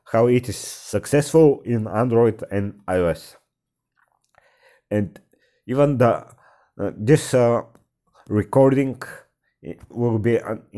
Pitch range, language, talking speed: 105-130 Hz, English, 100 wpm